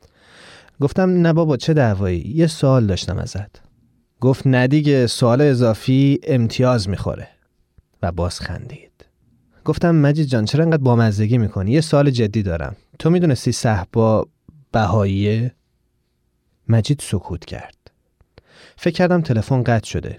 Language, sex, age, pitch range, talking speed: Persian, male, 30-49, 105-140 Hz, 125 wpm